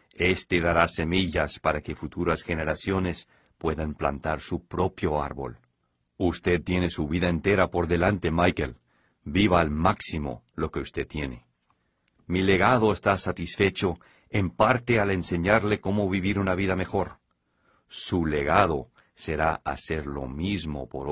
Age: 50-69